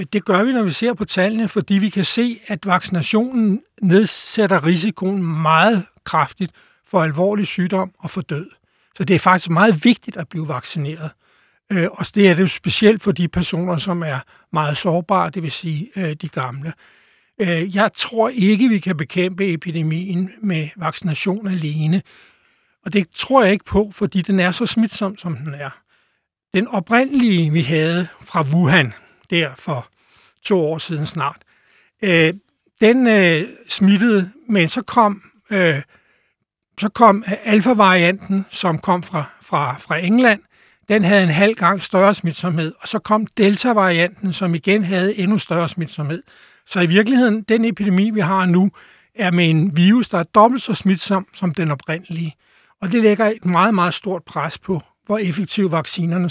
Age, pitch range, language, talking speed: 60-79, 170-210 Hz, Danish, 155 wpm